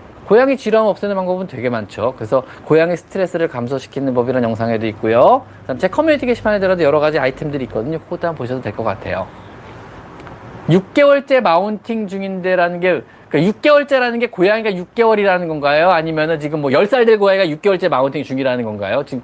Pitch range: 135-210 Hz